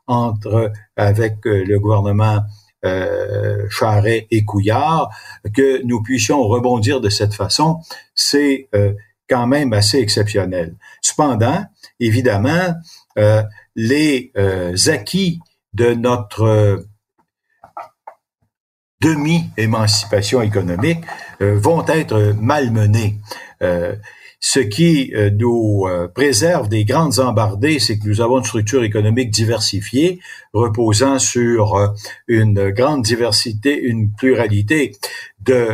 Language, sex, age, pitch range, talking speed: French, male, 50-69, 105-135 Hz, 95 wpm